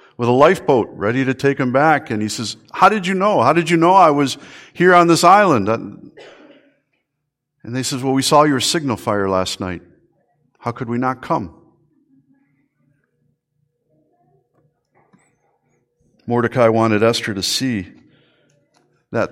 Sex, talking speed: male, 145 wpm